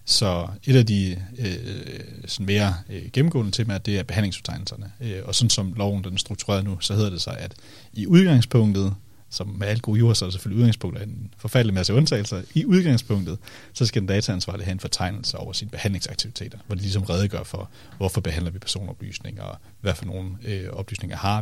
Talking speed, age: 195 wpm, 40-59